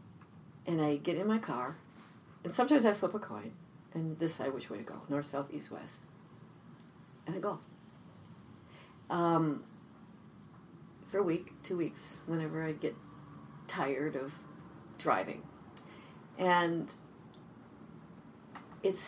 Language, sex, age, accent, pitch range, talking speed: English, female, 40-59, American, 160-200 Hz, 125 wpm